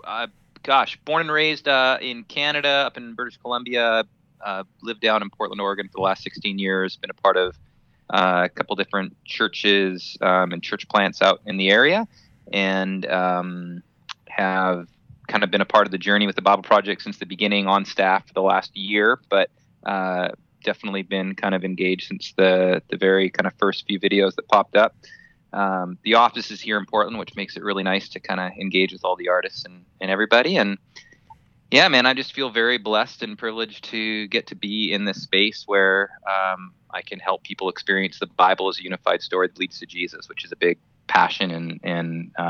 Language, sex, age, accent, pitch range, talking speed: English, male, 20-39, American, 90-105 Hz, 210 wpm